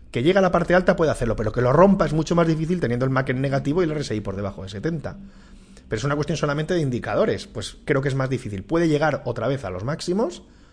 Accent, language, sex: Spanish, Spanish, male